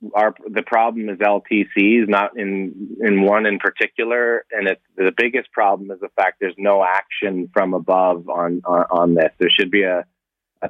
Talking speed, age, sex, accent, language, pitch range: 185 wpm, 30-49, male, American, English, 90-100 Hz